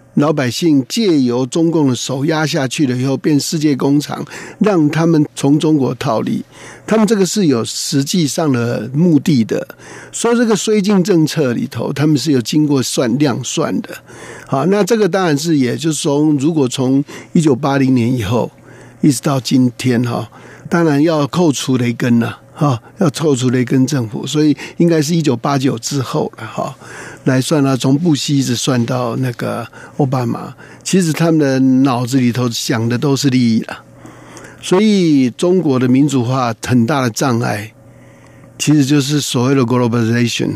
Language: Chinese